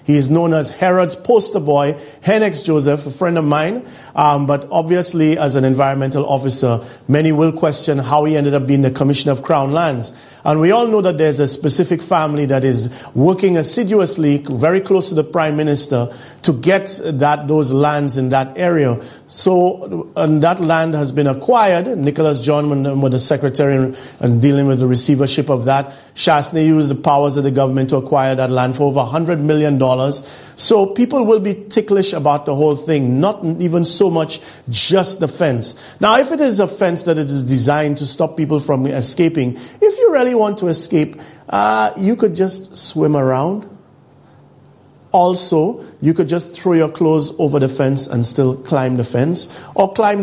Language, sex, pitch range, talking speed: English, male, 135-175 Hz, 185 wpm